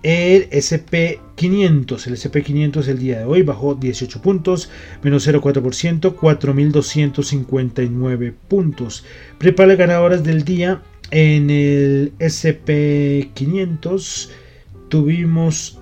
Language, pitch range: Spanish, 135-170 Hz